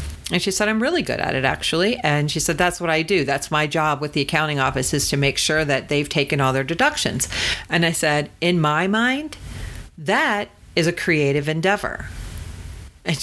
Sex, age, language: female, 40-59, English